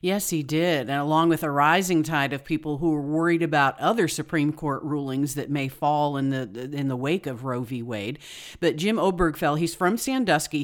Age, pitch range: 50-69, 140-175 Hz